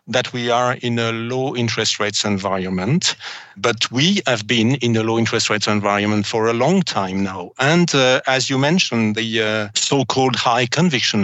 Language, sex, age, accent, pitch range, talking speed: English, male, 50-69, French, 105-125 Hz, 180 wpm